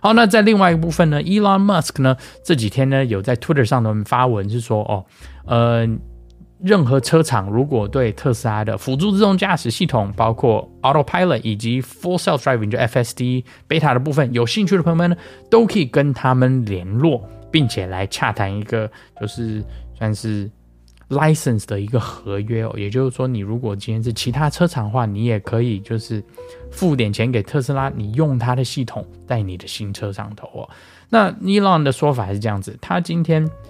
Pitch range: 105-145 Hz